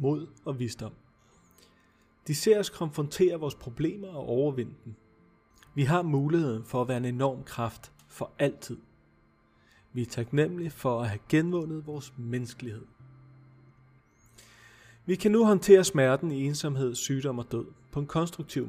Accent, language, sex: native, Danish, male